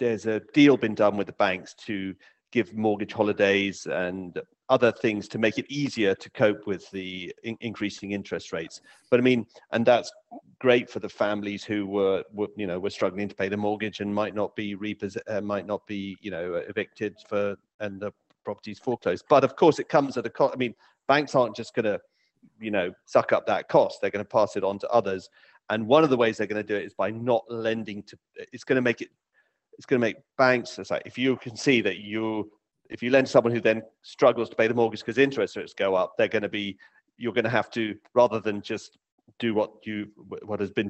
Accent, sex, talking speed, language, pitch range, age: British, male, 235 wpm, English, 100-120 Hz, 40-59